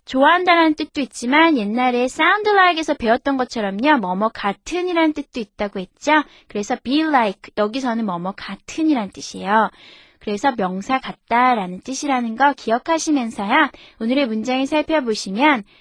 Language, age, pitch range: Korean, 20-39, 205-300 Hz